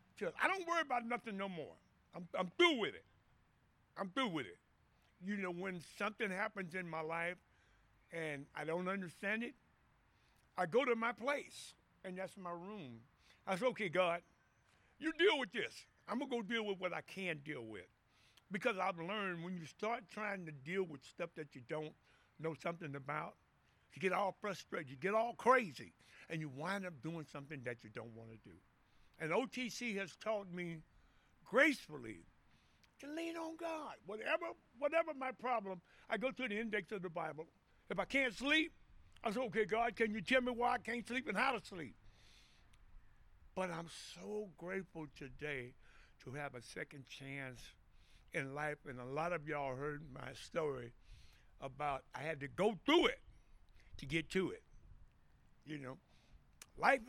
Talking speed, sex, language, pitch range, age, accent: 180 wpm, male, English, 150-230 Hz, 60-79, American